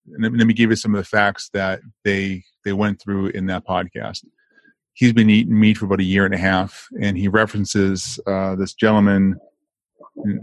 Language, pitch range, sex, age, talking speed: English, 95-110 Hz, male, 30-49, 200 wpm